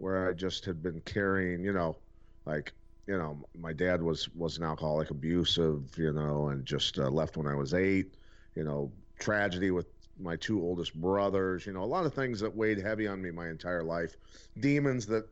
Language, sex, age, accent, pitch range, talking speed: English, male, 40-59, American, 85-105 Hz, 205 wpm